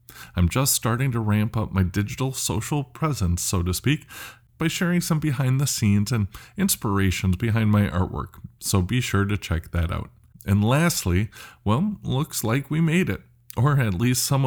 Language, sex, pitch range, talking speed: English, male, 95-130 Hz, 180 wpm